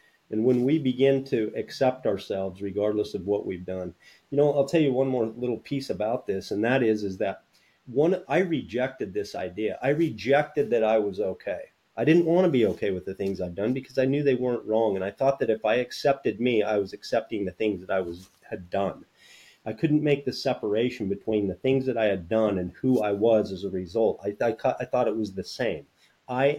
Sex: male